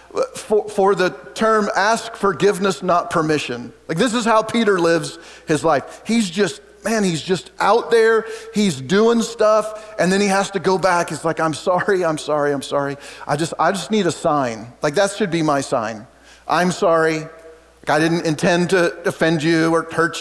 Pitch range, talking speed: 155-205 Hz, 195 wpm